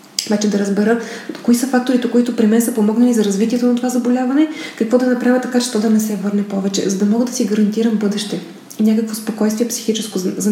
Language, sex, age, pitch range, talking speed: Bulgarian, female, 20-39, 205-235 Hz, 230 wpm